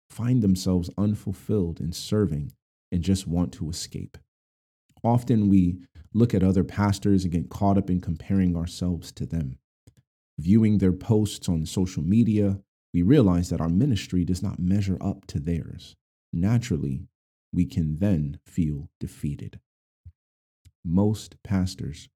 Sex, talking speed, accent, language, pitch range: male, 135 wpm, American, English, 85-105 Hz